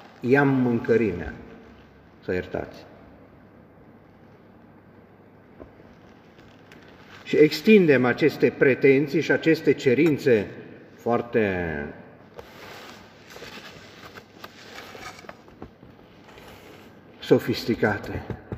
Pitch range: 120-155 Hz